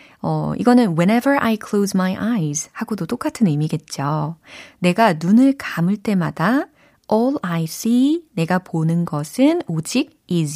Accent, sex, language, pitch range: native, female, Korean, 155-240 Hz